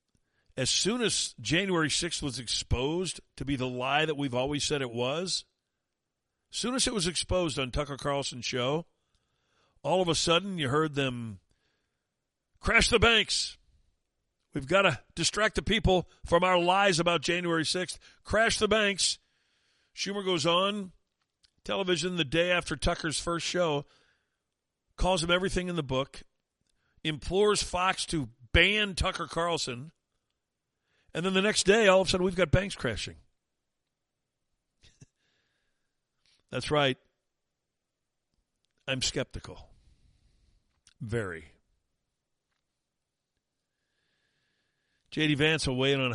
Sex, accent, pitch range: male, American, 120-175 Hz